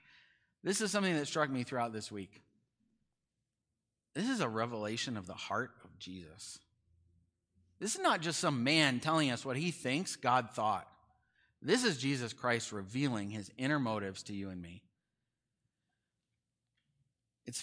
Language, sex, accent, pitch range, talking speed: English, male, American, 100-130 Hz, 150 wpm